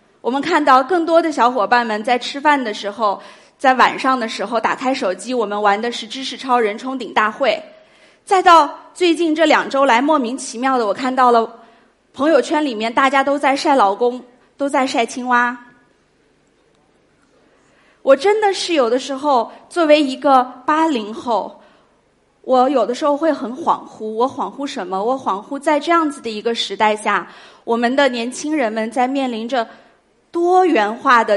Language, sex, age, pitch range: Chinese, female, 30-49, 230-305 Hz